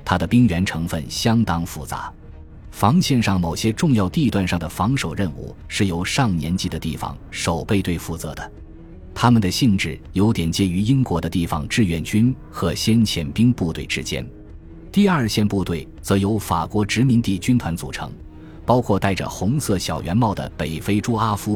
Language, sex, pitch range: Chinese, male, 80-110 Hz